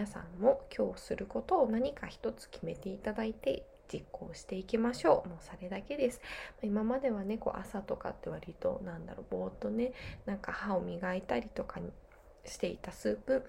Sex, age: female, 20-39